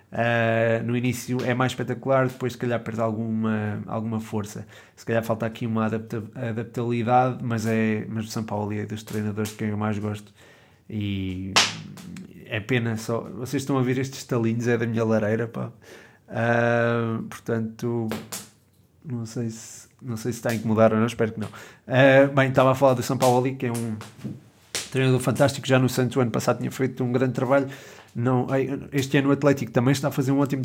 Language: Portuguese